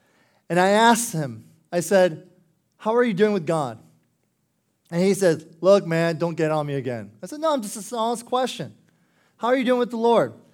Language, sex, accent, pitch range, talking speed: English, male, American, 160-195 Hz, 210 wpm